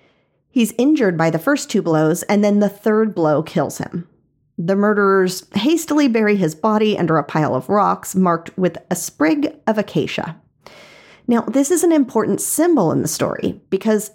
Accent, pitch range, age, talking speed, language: American, 165-225 Hz, 40-59, 175 wpm, English